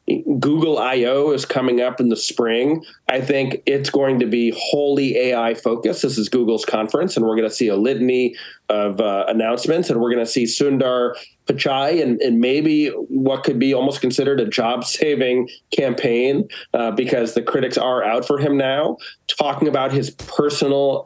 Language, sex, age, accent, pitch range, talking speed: English, male, 30-49, American, 115-140 Hz, 180 wpm